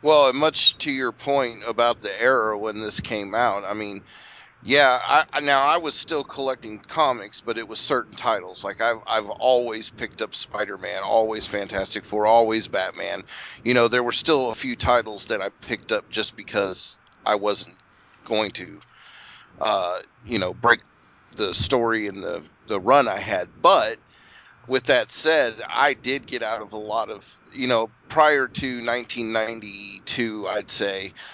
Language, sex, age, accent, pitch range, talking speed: English, male, 30-49, American, 105-125 Hz, 170 wpm